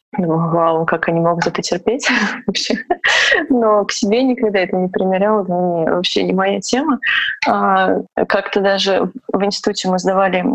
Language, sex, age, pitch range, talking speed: Russian, female, 20-39, 185-225 Hz, 140 wpm